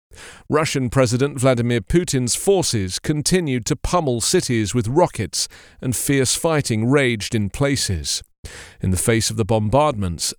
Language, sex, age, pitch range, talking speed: English, male, 40-59, 115-155 Hz, 135 wpm